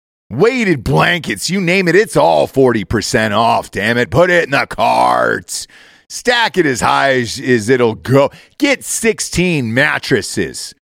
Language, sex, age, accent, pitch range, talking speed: English, male, 40-59, American, 125-180 Hz, 145 wpm